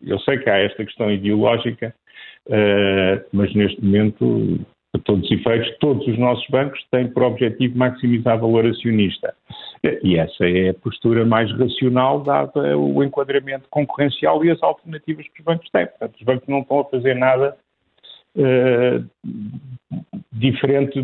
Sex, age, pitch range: male, 50-69, 110-140 Hz